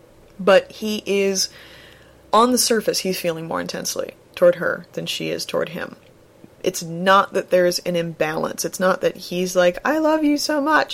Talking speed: 180 wpm